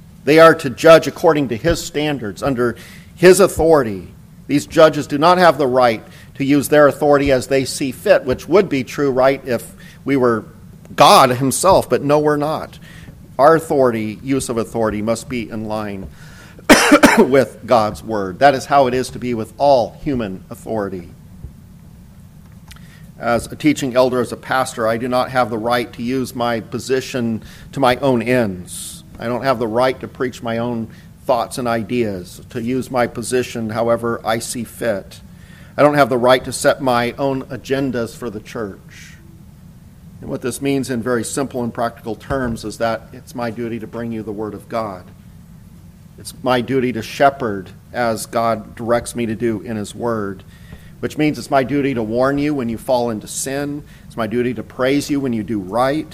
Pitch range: 115-140 Hz